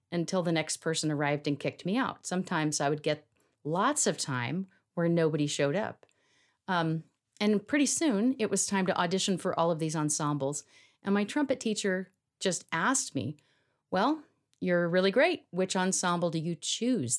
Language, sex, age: English, female, 40-59